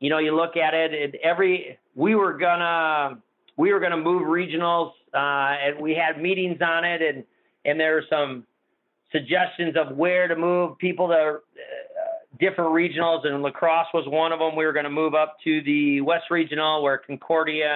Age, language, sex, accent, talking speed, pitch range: 40-59, English, male, American, 185 wpm, 140-165 Hz